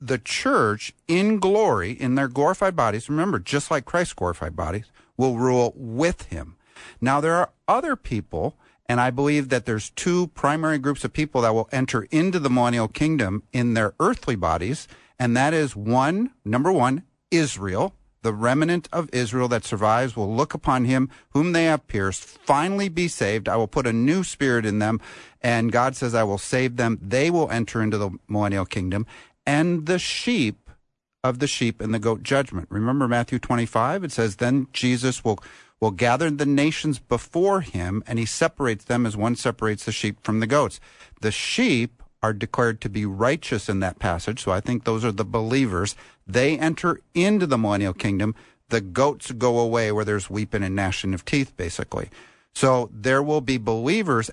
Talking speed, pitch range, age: 185 wpm, 110-145 Hz, 50-69